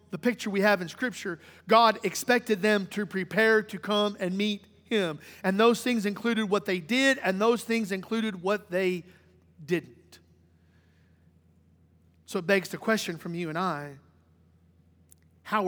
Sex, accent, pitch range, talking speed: male, American, 175-225 Hz, 155 wpm